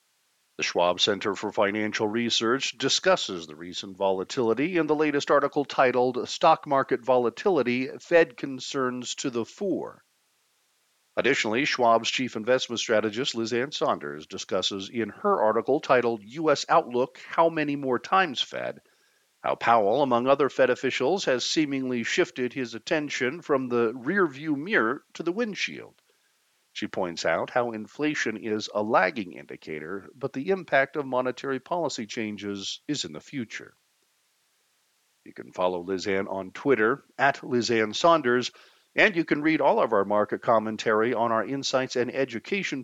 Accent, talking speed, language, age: American, 145 wpm, English, 50-69